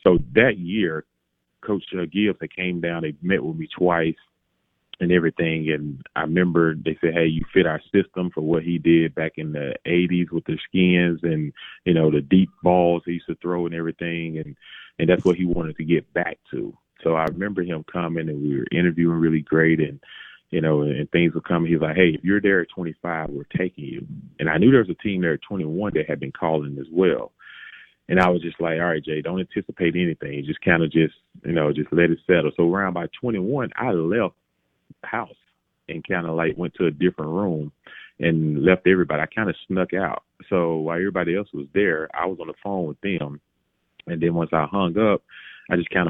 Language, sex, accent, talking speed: English, male, American, 225 wpm